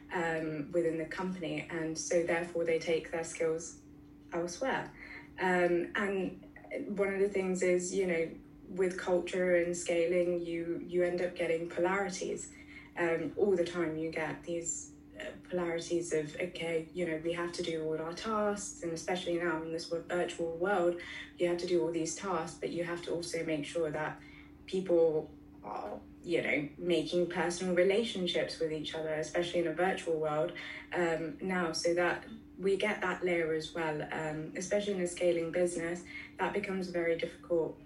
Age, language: 20-39, English